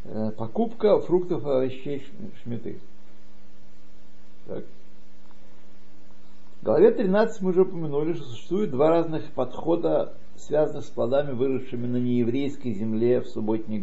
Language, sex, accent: Russian, male, native